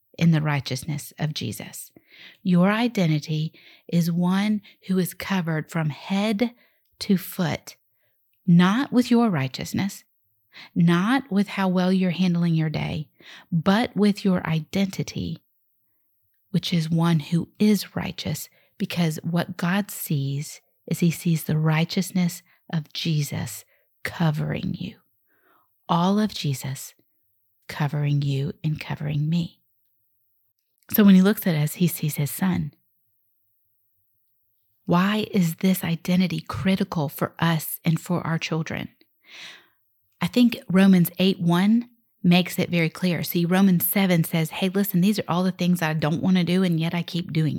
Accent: American